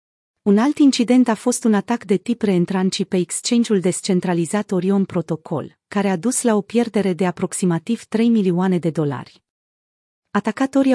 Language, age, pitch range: Romanian, 30-49, 175-225 Hz